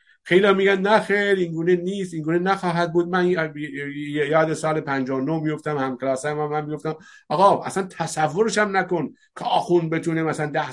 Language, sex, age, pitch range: Persian, male, 50-69, 145-180 Hz